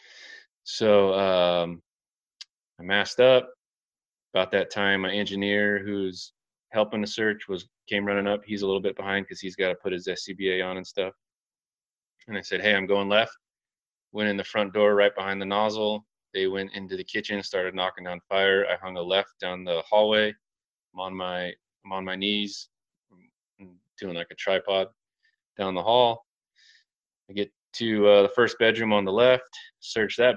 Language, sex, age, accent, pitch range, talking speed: English, male, 20-39, American, 95-110 Hz, 185 wpm